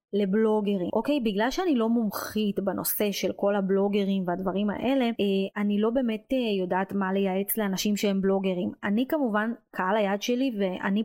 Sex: female